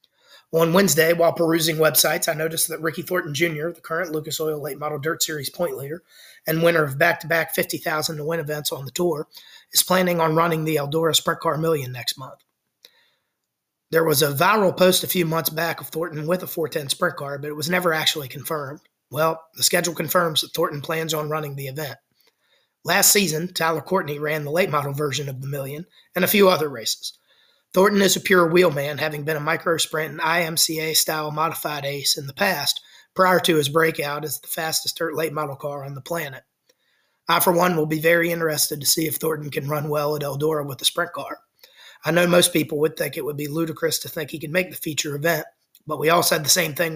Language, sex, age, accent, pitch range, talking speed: English, male, 30-49, American, 150-170 Hz, 215 wpm